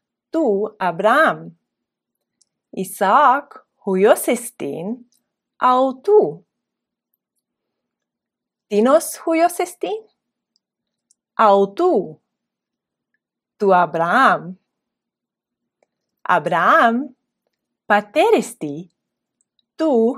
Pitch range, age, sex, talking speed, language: 195-310 Hz, 40-59, female, 40 wpm, Greek